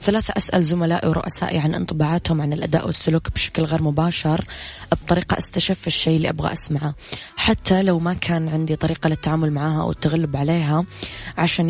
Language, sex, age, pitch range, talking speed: Arabic, female, 20-39, 150-170 Hz, 155 wpm